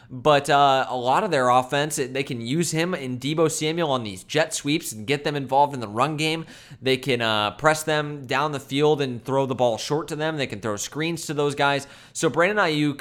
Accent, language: American, English